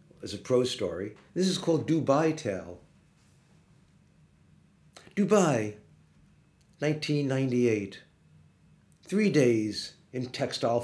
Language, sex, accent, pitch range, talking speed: English, male, American, 105-135 Hz, 85 wpm